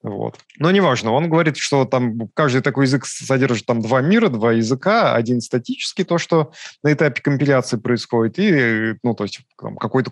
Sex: male